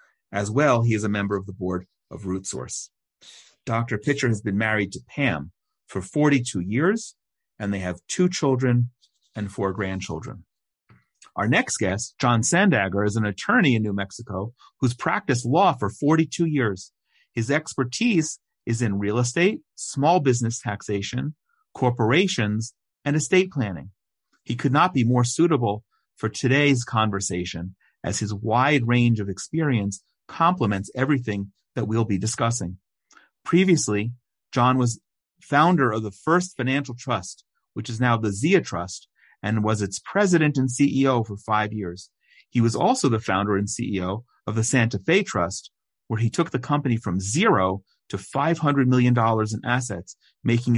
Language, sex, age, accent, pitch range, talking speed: English, male, 40-59, American, 100-135 Hz, 155 wpm